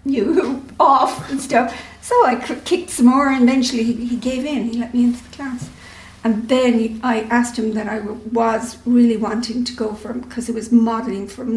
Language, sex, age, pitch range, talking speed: English, female, 60-79, 225-245 Hz, 200 wpm